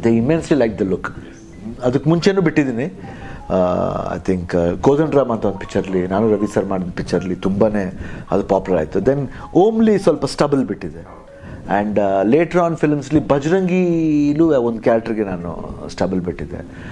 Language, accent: Kannada, native